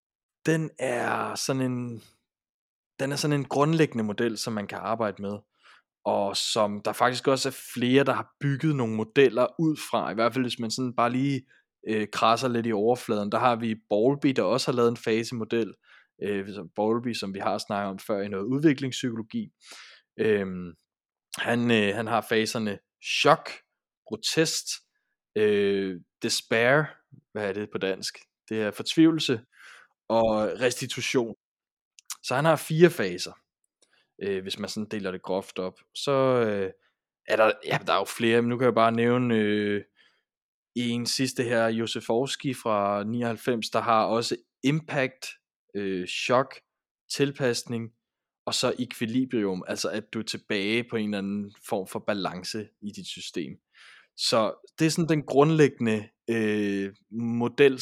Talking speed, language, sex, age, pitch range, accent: 150 wpm, Danish, male, 20-39, 105-130 Hz, native